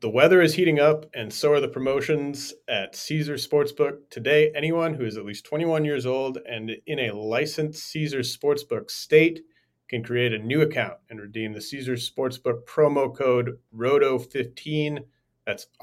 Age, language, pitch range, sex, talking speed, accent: 30-49, English, 120-150 Hz, male, 165 wpm, American